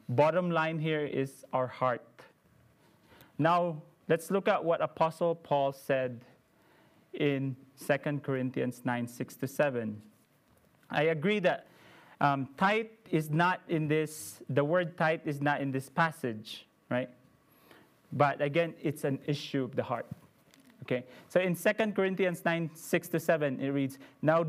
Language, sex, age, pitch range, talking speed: English, male, 30-49, 130-170 Hz, 145 wpm